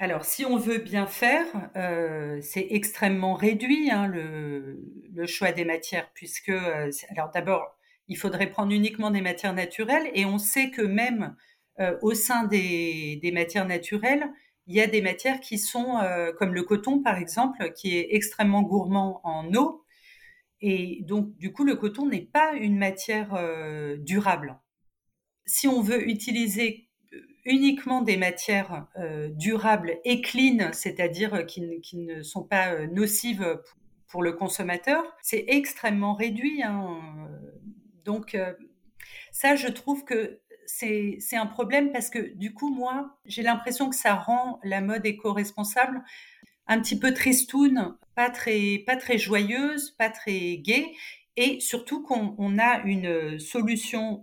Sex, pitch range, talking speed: female, 185-245 Hz, 155 wpm